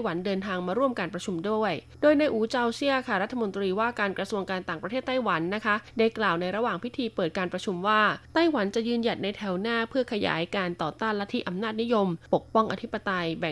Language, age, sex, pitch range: Thai, 20-39, female, 180-230 Hz